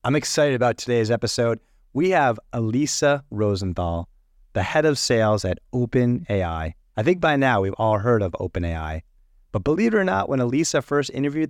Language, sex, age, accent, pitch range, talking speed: English, male, 30-49, American, 100-140 Hz, 170 wpm